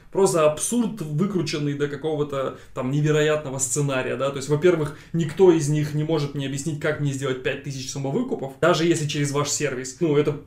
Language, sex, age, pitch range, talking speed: Russian, male, 20-39, 140-165 Hz, 180 wpm